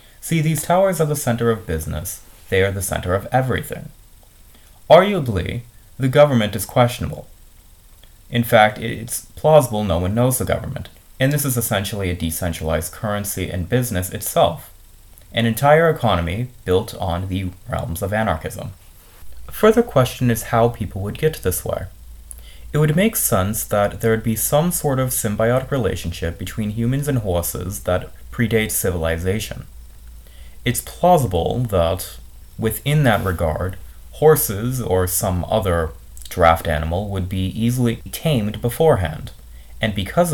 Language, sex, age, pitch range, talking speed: English, male, 30-49, 85-120 Hz, 145 wpm